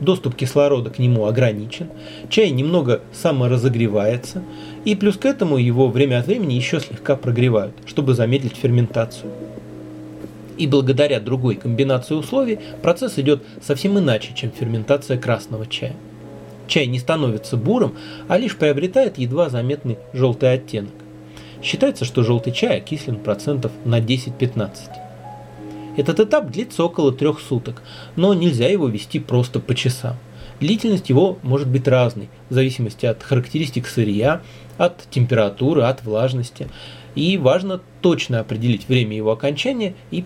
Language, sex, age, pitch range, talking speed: Russian, male, 30-49, 115-145 Hz, 135 wpm